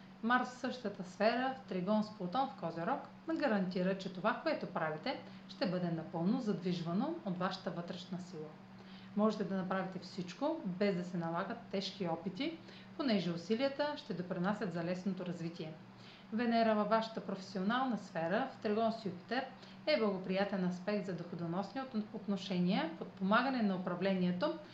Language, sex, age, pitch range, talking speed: Bulgarian, female, 40-59, 180-225 Hz, 145 wpm